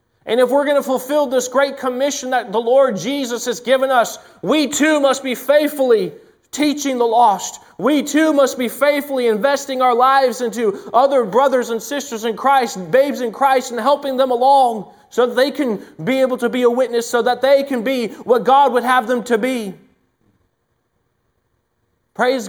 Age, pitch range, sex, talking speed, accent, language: 30-49, 165-250 Hz, male, 185 wpm, American, English